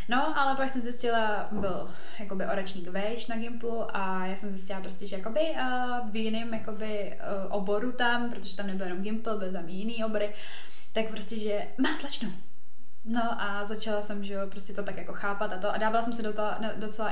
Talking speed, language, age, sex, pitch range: 205 wpm, Czech, 20-39, female, 190-220 Hz